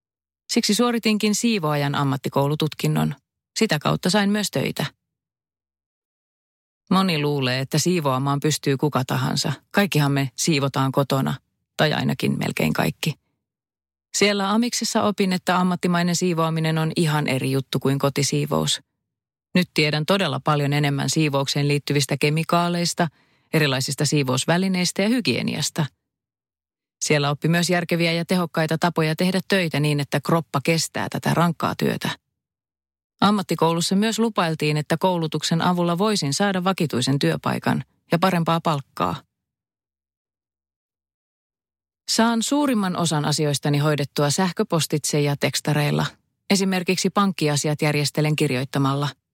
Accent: native